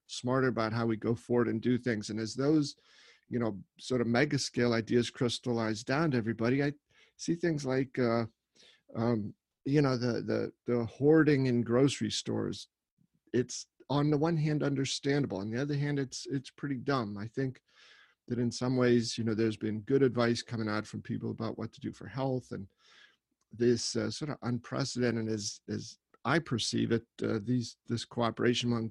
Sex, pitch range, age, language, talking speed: male, 115-130 Hz, 40-59, English, 185 wpm